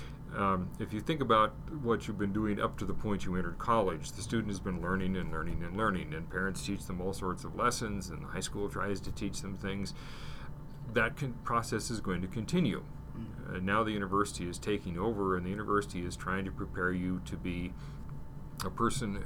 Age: 40-59